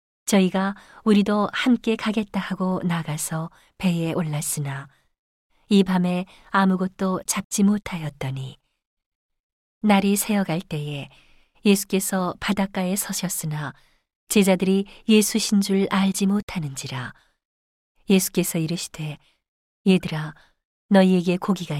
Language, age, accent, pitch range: Korean, 40-59, native, 160-205 Hz